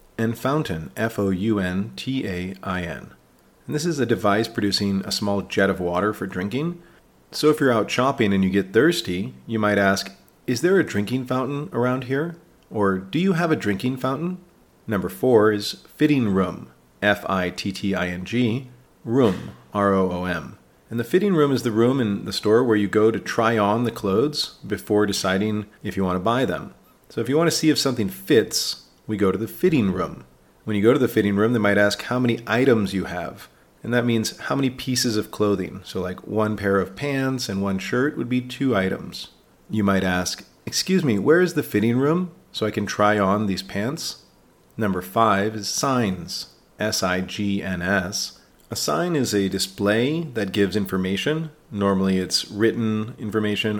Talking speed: 180 wpm